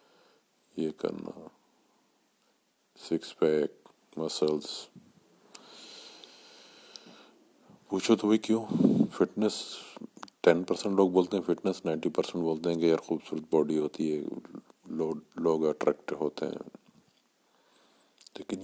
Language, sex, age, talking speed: Urdu, male, 50-69, 30 wpm